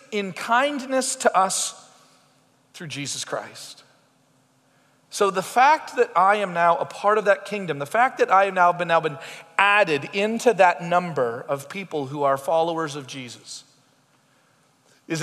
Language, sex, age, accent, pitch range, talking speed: English, male, 40-59, American, 155-220 Hz, 160 wpm